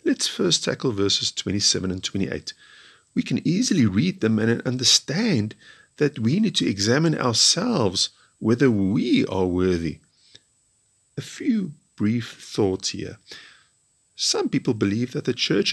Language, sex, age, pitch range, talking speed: English, male, 50-69, 105-155 Hz, 135 wpm